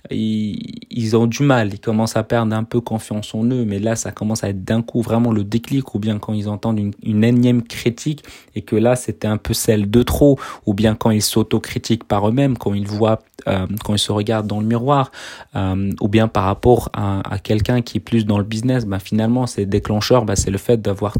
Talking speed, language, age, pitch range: 235 wpm, French, 30-49, 105-125 Hz